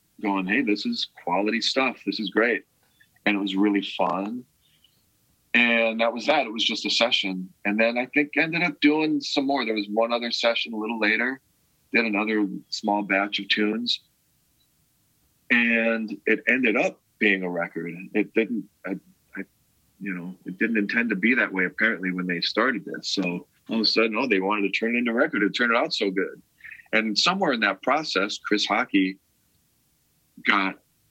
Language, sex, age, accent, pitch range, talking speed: English, male, 40-59, American, 95-115 Hz, 190 wpm